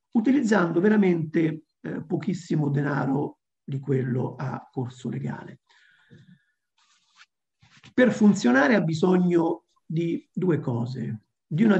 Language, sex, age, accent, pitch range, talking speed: Italian, male, 50-69, native, 140-180 Hz, 95 wpm